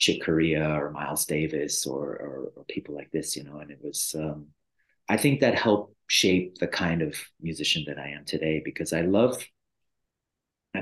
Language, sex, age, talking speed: English, male, 30-49, 190 wpm